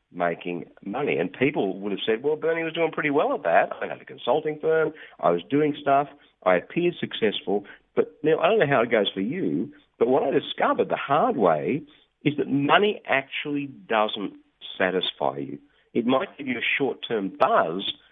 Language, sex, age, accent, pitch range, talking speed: English, male, 50-69, Australian, 100-150 Hz, 190 wpm